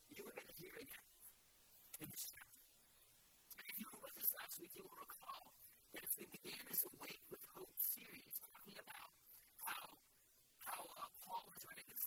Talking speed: 190 wpm